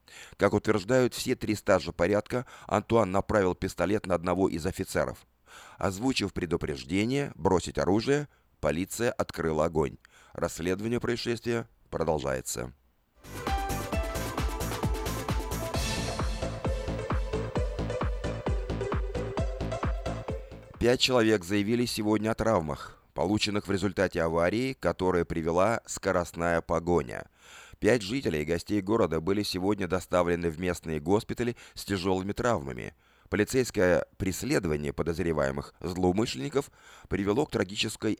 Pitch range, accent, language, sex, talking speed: 85-110 Hz, native, Russian, male, 90 wpm